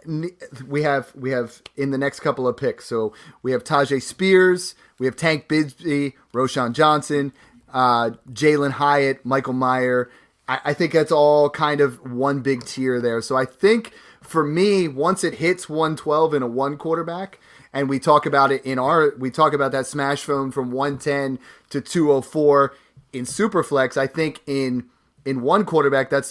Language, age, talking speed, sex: English, 30-49, 175 wpm, male